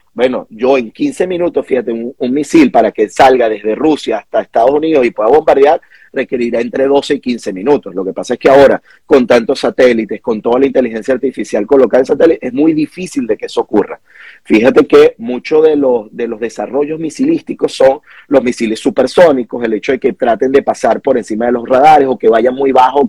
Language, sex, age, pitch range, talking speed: Spanish, male, 30-49, 125-205 Hz, 205 wpm